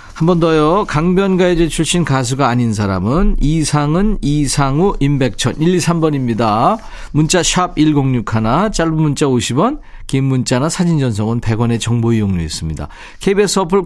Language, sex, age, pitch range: Korean, male, 40-59, 115-165 Hz